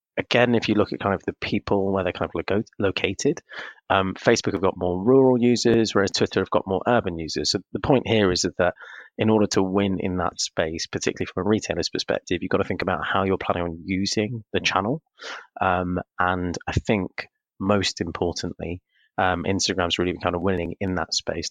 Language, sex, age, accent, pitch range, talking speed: English, male, 20-39, British, 90-100 Hz, 210 wpm